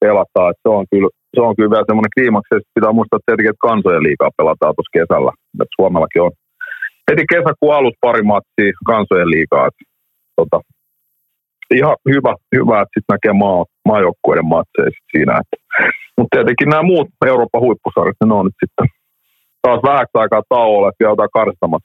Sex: male